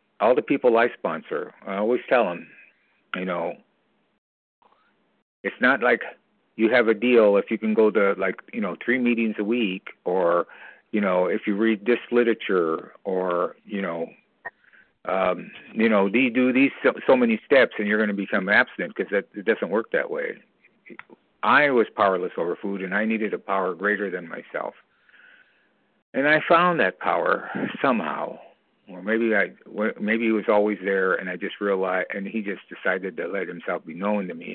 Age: 50-69